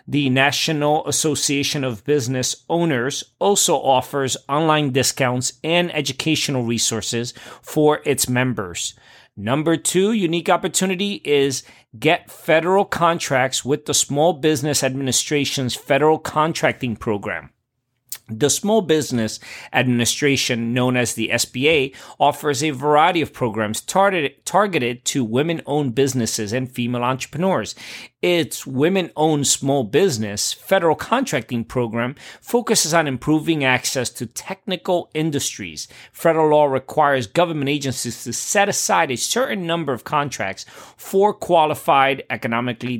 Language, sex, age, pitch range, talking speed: English, male, 40-59, 120-155 Hz, 115 wpm